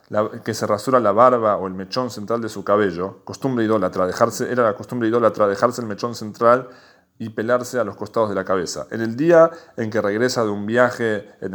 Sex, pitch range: male, 110-140 Hz